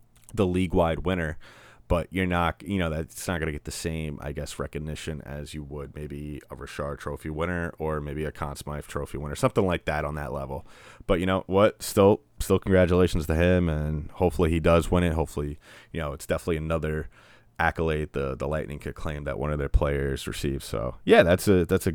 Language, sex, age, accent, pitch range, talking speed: English, male, 30-49, American, 75-95 Hz, 210 wpm